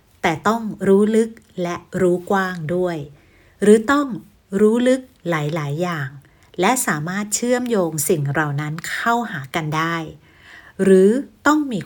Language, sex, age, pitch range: Thai, female, 60-79, 160-205 Hz